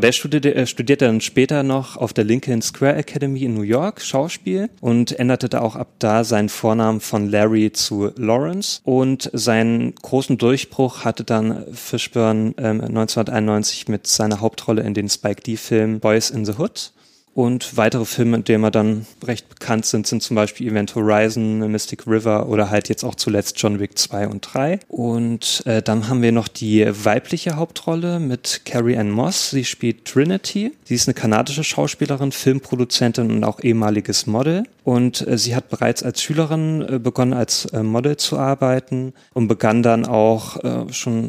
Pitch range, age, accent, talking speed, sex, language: 110-130 Hz, 30-49, German, 170 wpm, male, German